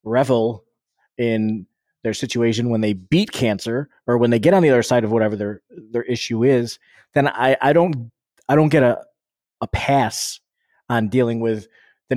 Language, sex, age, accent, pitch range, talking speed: English, male, 20-39, American, 110-135 Hz, 180 wpm